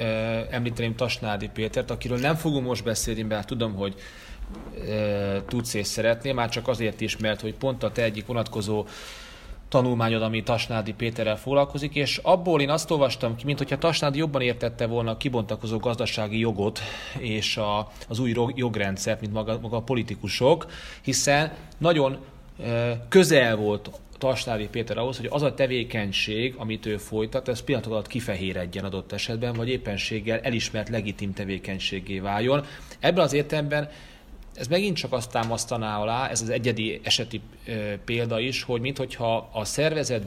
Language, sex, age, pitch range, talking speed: Hungarian, male, 30-49, 110-130 Hz, 145 wpm